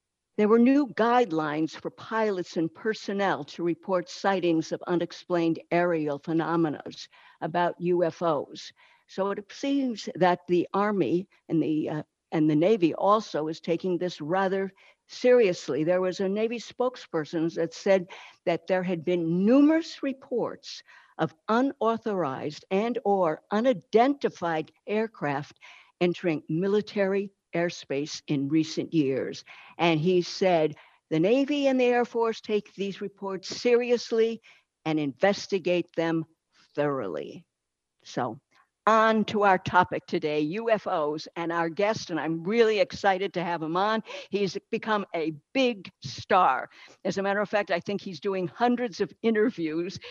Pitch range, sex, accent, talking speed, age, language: 165-210 Hz, female, American, 135 wpm, 60-79, English